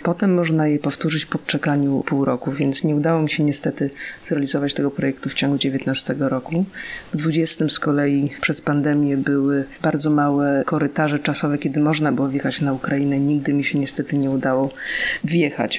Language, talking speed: Polish, 170 wpm